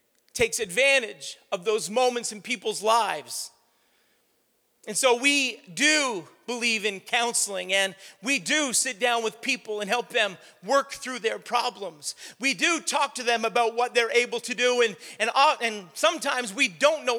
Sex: male